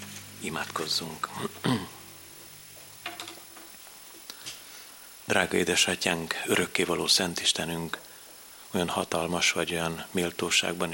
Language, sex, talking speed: Hungarian, male, 60 wpm